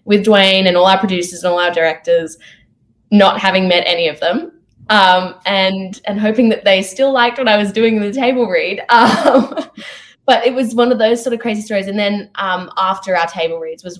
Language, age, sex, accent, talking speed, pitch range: English, 10-29, female, Australian, 220 wpm, 185-230 Hz